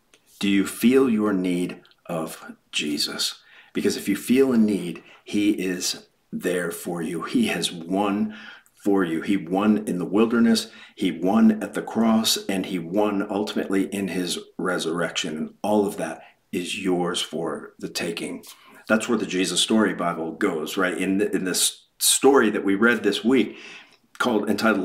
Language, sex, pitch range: English, male, 95-110 Hz